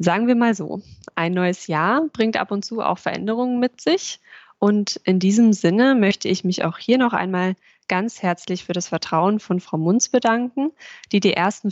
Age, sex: 20-39, female